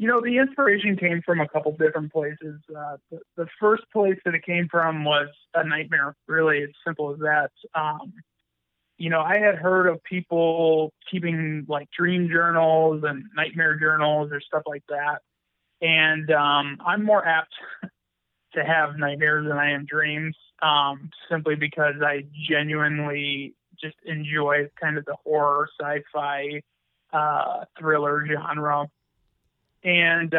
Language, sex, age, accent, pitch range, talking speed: English, male, 20-39, American, 145-165 Hz, 145 wpm